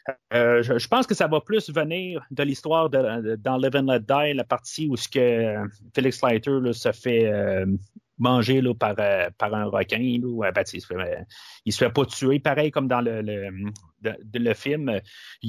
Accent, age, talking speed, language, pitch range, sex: Canadian, 30-49, 220 wpm, French, 115-160 Hz, male